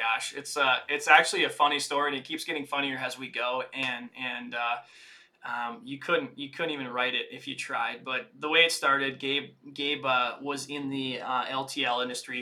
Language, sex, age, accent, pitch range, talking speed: English, male, 20-39, American, 130-150 Hz, 210 wpm